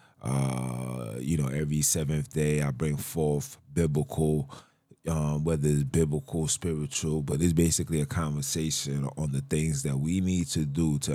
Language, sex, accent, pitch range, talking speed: English, male, American, 75-85 Hz, 155 wpm